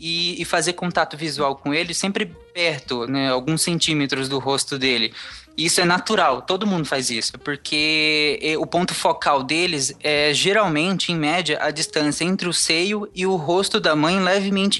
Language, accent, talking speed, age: Portuguese, Brazilian, 165 wpm, 20-39